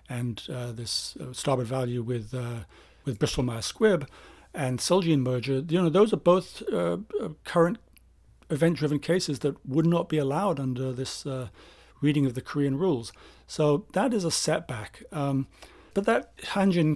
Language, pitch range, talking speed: English, 130-155 Hz, 165 wpm